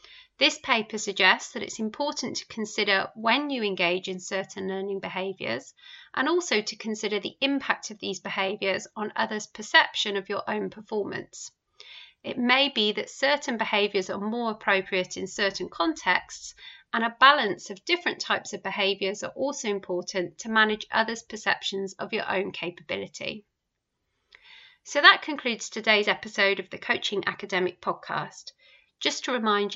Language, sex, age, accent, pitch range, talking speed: English, female, 30-49, British, 195-250 Hz, 150 wpm